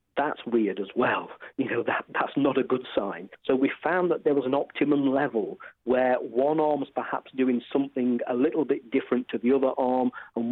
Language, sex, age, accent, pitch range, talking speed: English, male, 40-59, British, 120-145 Hz, 205 wpm